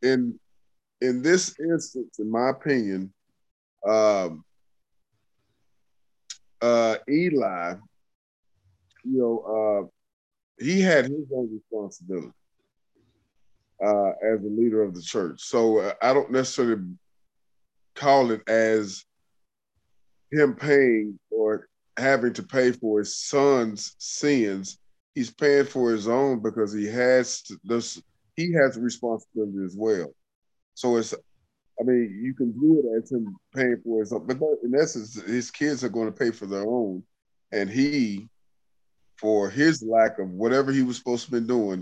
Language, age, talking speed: English, 20-39, 140 wpm